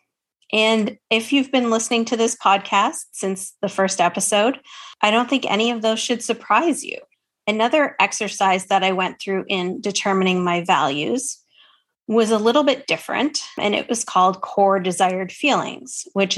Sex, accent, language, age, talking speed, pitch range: female, American, English, 30-49, 160 wpm, 185-230 Hz